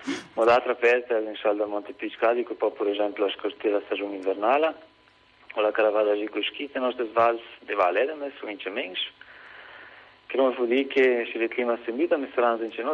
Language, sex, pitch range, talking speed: Italian, male, 110-140 Hz, 140 wpm